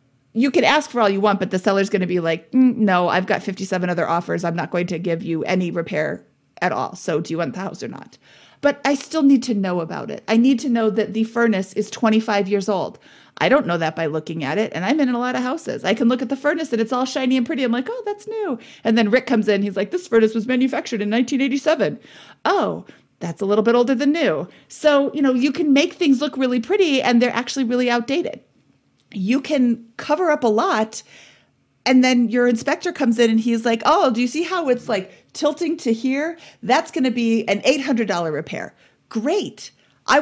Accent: American